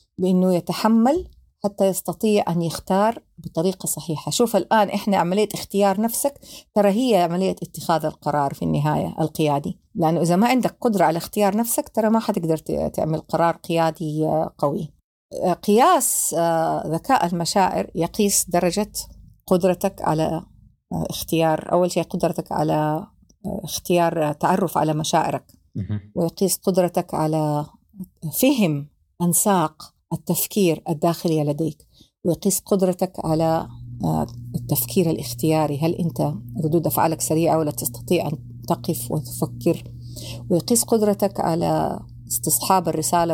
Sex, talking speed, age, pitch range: female, 110 wpm, 50-69, 155-195 Hz